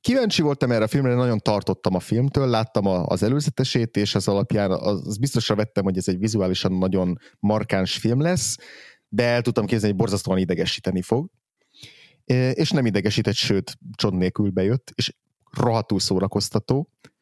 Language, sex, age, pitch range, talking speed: Hungarian, male, 30-49, 100-120 Hz, 155 wpm